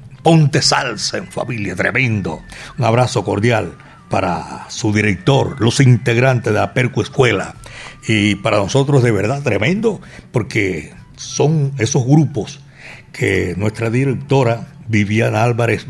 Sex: male